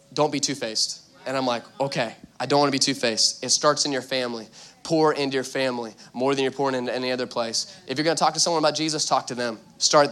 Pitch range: 130-165 Hz